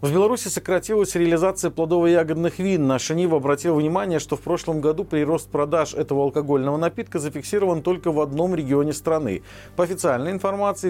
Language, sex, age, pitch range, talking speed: Russian, male, 40-59, 140-185 Hz, 155 wpm